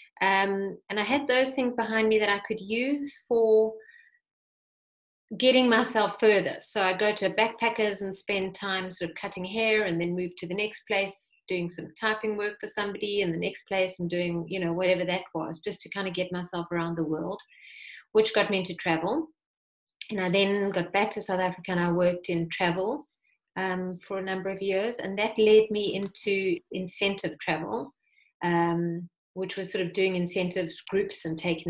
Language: English